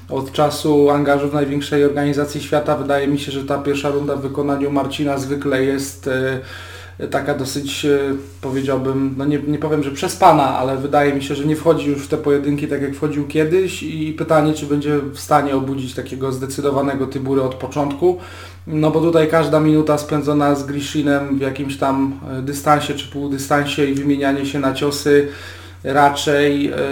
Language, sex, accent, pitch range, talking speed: Polish, male, native, 135-150 Hz, 165 wpm